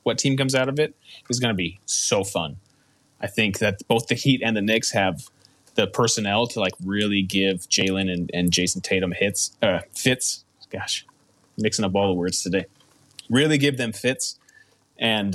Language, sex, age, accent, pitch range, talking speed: English, male, 30-49, American, 95-120 Hz, 190 wpm